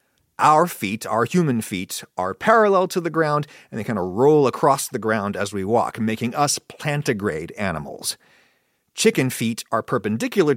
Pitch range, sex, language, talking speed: 115-160 Hz, male, English, 165 wpm